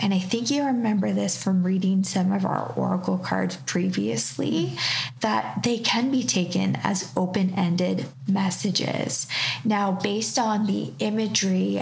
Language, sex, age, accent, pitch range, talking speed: English, female, 20-39, American, 145-200 Hz, 135 wpm